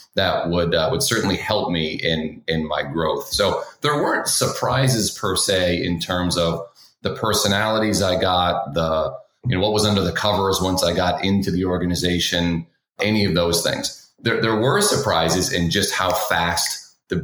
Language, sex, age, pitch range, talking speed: English, male, 30-49, 90-125 Hz, 180 wpm